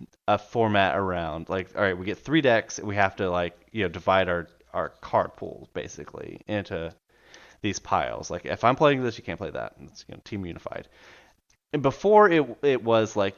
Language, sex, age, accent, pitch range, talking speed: English, male, 30-49, American, 95-130 Hz, 210 wpm